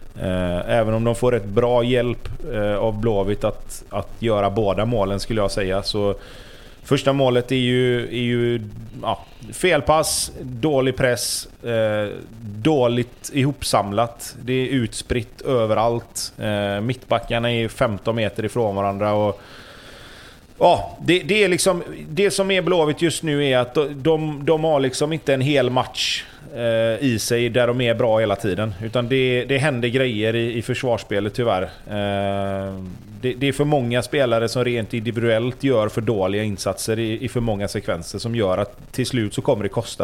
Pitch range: 105-125 Hz